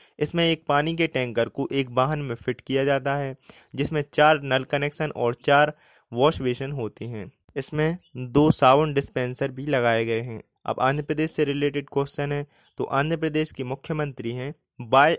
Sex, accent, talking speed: male, native, 180 wpm